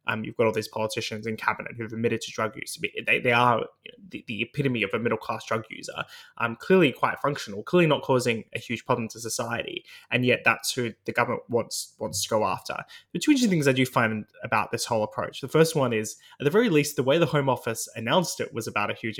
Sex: male